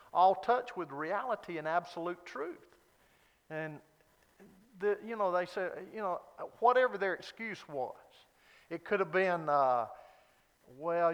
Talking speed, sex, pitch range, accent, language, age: 135 wpm, male, 150-195 Hz, American, English, 50-69